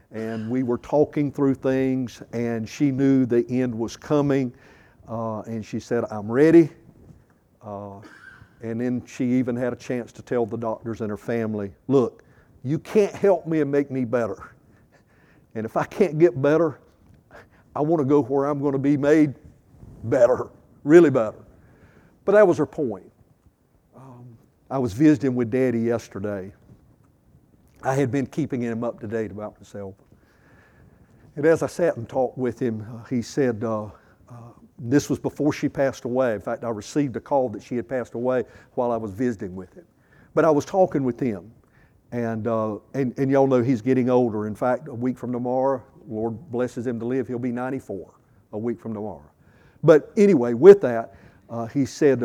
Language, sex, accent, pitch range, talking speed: English, male, American, 115-140 Hz, 185 wpm